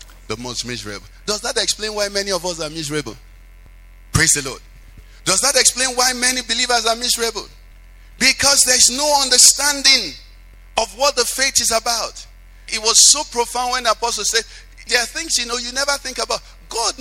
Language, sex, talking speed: English, male, 185 wpm